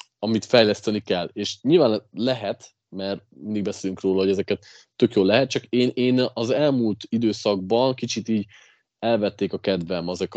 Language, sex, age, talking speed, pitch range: Hungarian, male, 20-39, 150 wpm, 95-120 Hz